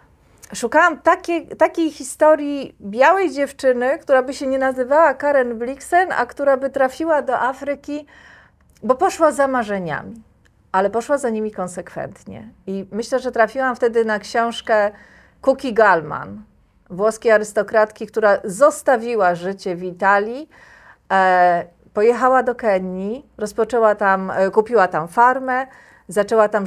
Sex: female